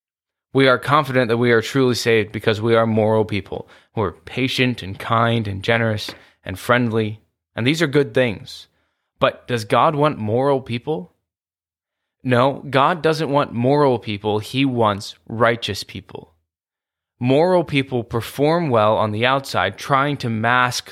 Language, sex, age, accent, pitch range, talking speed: English, male, 20-39, American, 95-125 Hz, 150 wpm